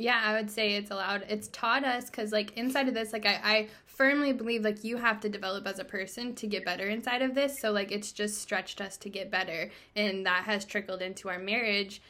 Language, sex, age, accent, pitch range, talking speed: English, female, 10-29, American, 195-235 Hz, 245 wpm